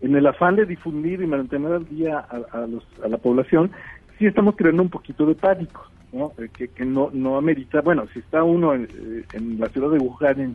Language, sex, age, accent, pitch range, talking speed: Spanish, male, 50-69, Mexican, 120-150 Hz, 220 wpm